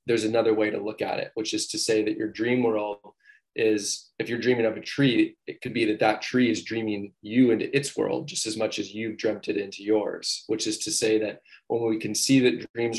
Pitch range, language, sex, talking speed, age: 105-120 Hz, English, male, 250 wpm, 20-39